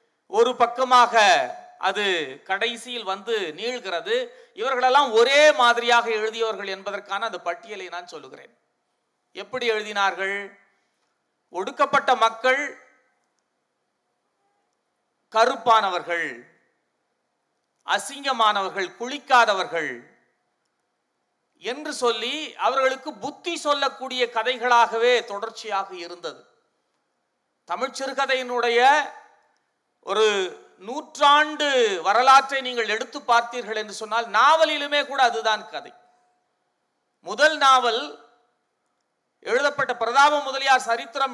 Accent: native